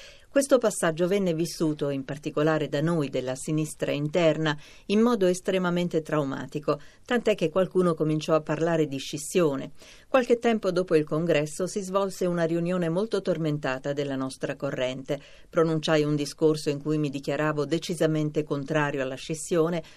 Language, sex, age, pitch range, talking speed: Italian, female, 40-59, 145-180 Hz, 145 wpm